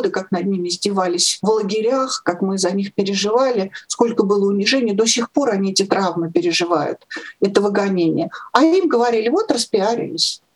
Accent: native